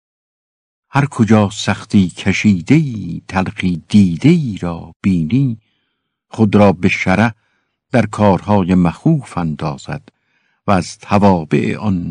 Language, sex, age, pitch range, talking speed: Persian, male, 60-79, 95-115 Hz, 100 wpm